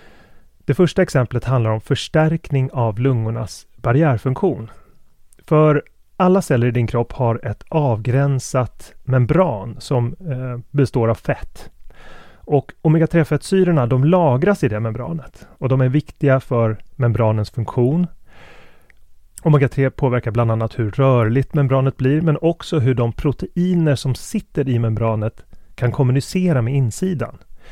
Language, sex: Swedish, male